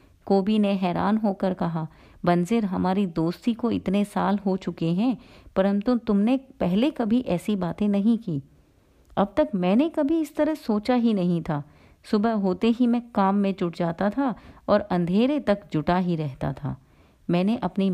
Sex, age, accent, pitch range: female, 30-49, native, 180-230 Hz